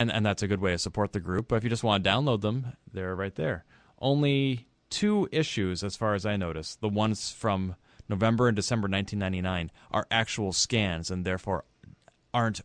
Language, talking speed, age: English, 200 wpm, 30-49